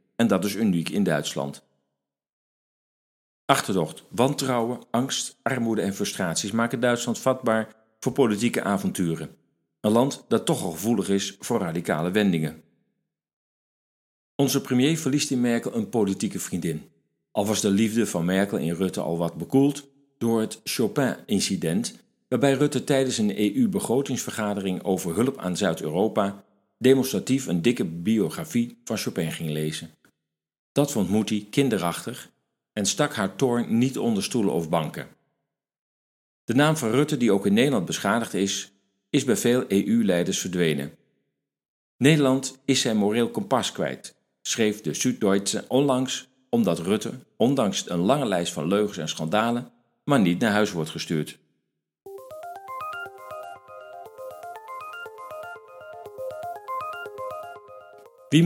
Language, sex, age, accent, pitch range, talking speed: Dutch, male, 50-69, Dutch, 90-130 Hz, 125 wpm